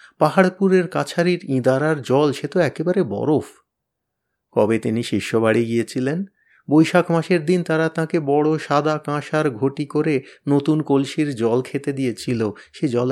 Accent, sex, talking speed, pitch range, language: native, male, 130 wpm, 125-155 Hz, Bengali